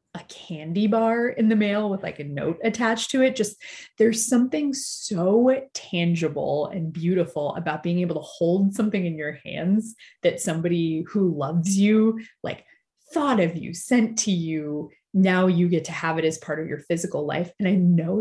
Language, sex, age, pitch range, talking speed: English, female, 20-39, 165-220 Hz, 185 wpm